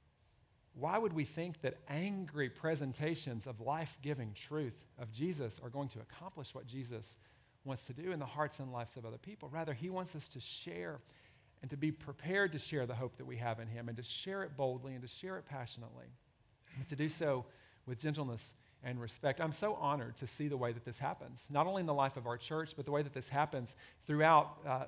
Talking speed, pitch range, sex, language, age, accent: 220 wpm, 130-160 Hz, male, English, 40-59, American